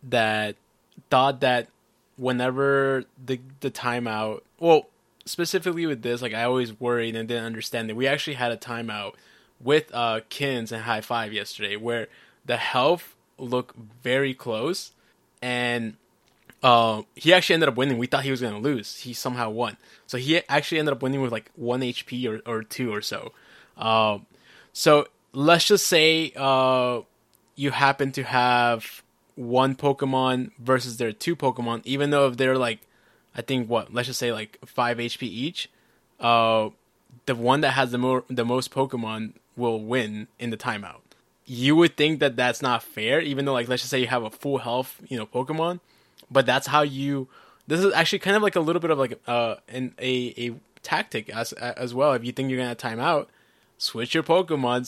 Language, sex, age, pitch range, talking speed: English, male, 20-39, 120-140 Hz, 185 wpm